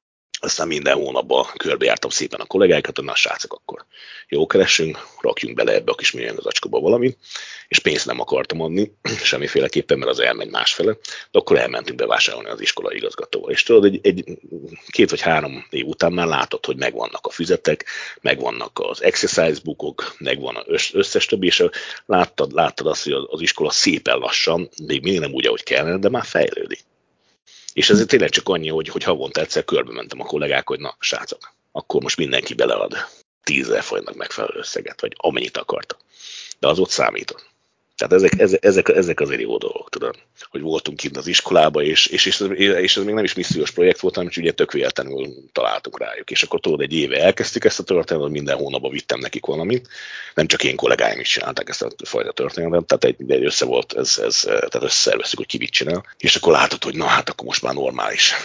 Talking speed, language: 195 wpm, Hungarian